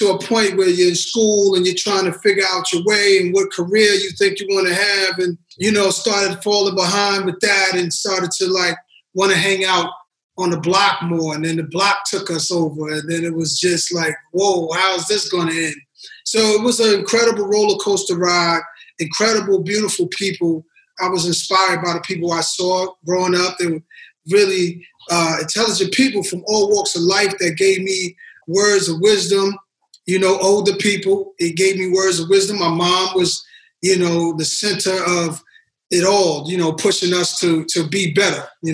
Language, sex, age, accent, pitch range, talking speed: English, male, 20-39, American, 175-205 Hz, 195 wpm